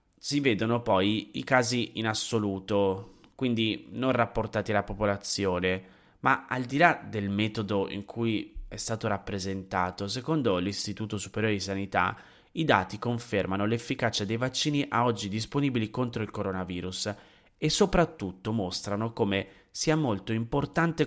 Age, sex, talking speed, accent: 20-39, male, 135 wpm, native